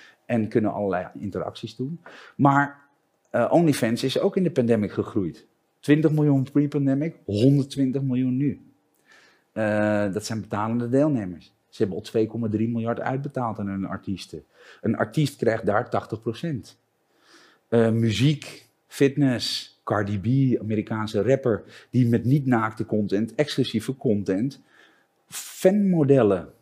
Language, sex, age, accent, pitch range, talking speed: Dutch, male, 40-59, Dutch, 110-140 Hz, 120 wpm